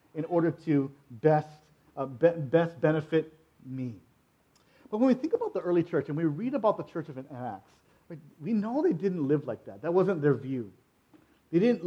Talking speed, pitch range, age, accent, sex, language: 195 wpm, 130-160 Hz, 40-59, American, male, English